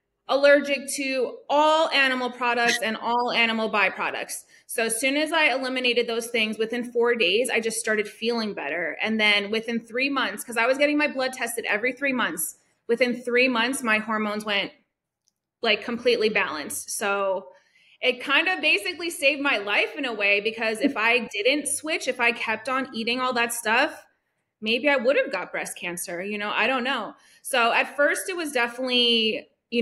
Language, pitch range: English, 210-255 Hz